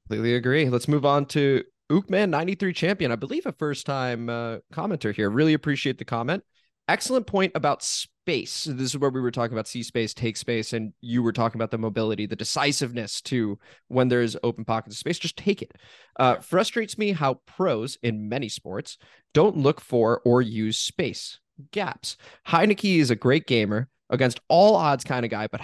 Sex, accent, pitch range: male, American, 115-145 Hz